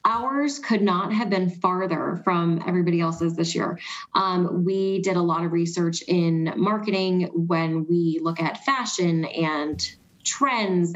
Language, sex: English, female